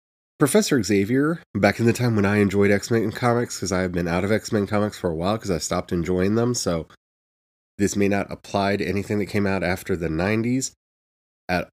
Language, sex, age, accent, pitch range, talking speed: English, male, 30-49, American, 95-130 Hz, 210 wpm